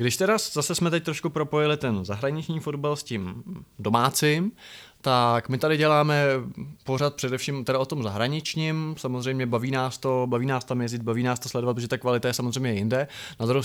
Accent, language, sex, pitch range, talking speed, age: native, Czech, male, 125-155 Hz, 190 wpm, 20-39